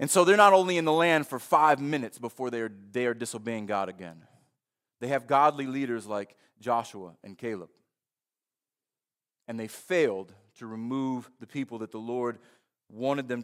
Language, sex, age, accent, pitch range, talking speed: English, male, 30-49, American, 115-160 Hz, 175 wpm